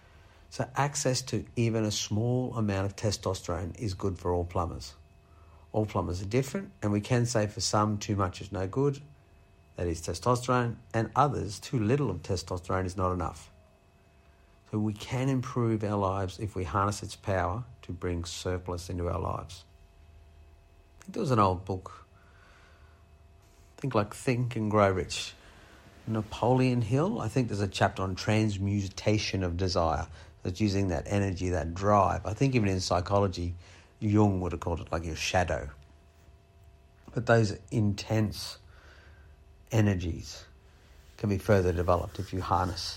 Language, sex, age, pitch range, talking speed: English, male, 50-69, 85-105 Hz, 160 wpm